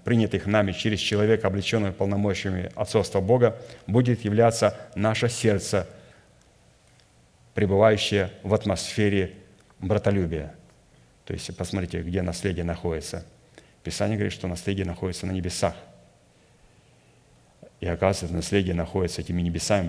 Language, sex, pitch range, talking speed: Russian, male, 90-100 Hz, 105 wpm